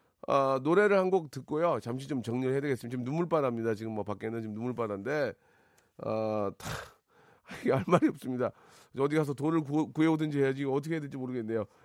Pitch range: 110-155 Hz